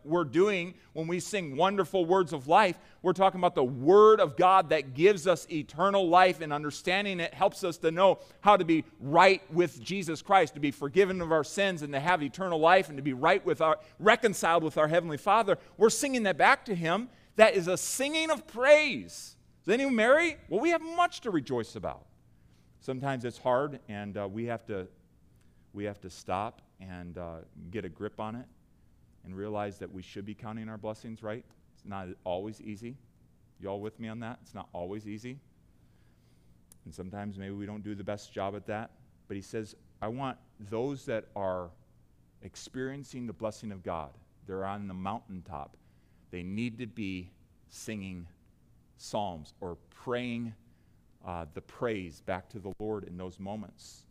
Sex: male